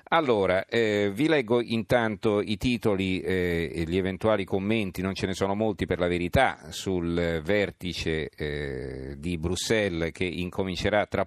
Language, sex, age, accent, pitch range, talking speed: Italian, male, 50-69, native, 90-110 Hz, 145 wpm